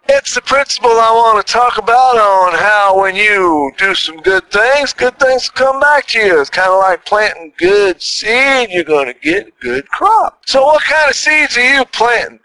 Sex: male